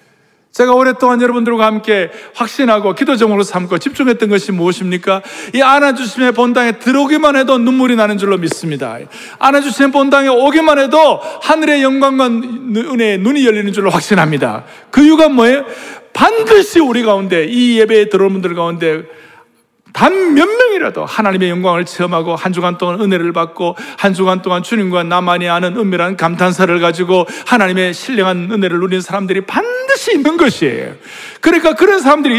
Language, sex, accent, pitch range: Korean, male, native, 175-260 Hz